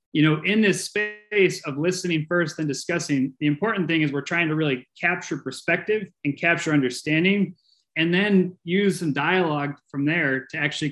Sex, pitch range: male, 140-180 Hz